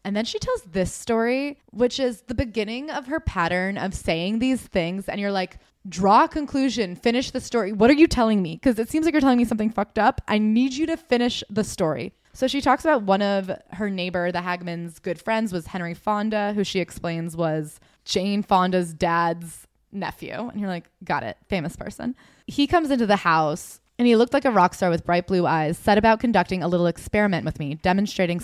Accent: American